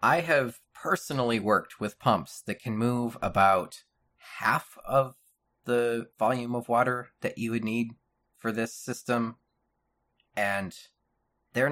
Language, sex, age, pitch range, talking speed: English, male, 30-49, 110-125 Hz, 130 wpm